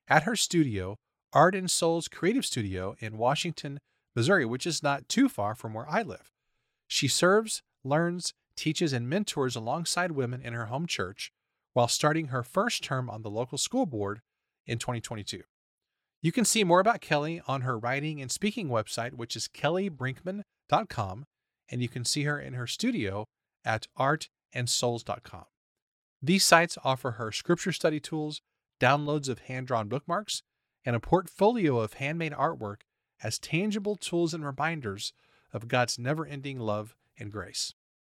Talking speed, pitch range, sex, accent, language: 150 wpm, 120-170 Hz, male, American, English